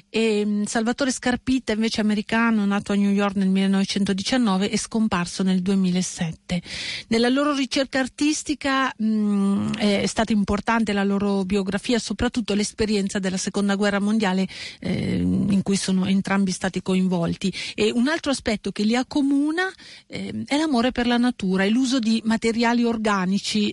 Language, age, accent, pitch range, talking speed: Italian, 40-59, native, 185-235 Hz, 145 wpm